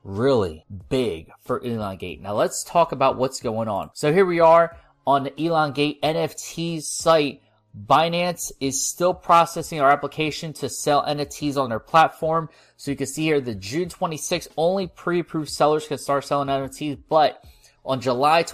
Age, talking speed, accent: 20-39, 160 wpm, American